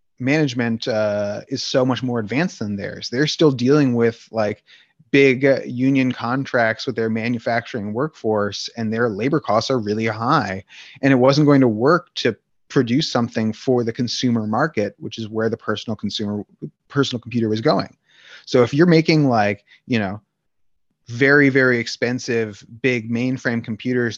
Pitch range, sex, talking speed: 110-135 Hz, male, 160 wpm